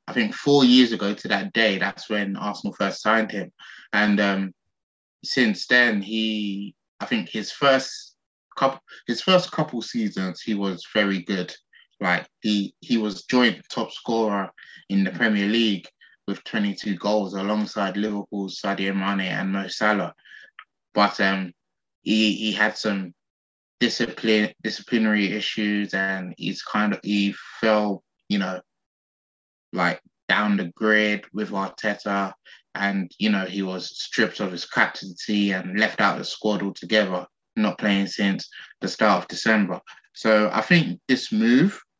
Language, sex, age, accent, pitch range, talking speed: English, male, 20-39, British, 95-110 Hz, 145 wpm